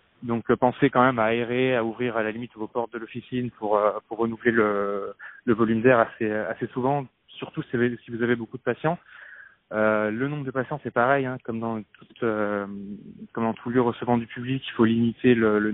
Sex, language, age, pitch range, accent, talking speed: male, French, 20-39, 110-125 Hz, French, 215 wpm